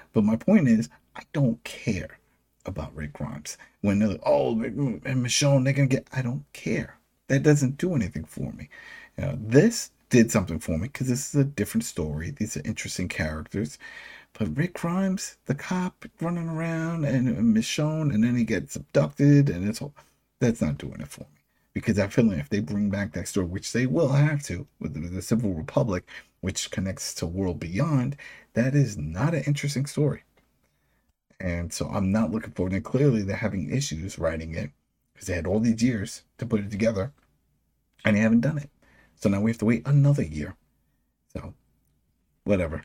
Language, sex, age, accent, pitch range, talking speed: English, male, 50-69, American, 95-140 Hz, 190 wpm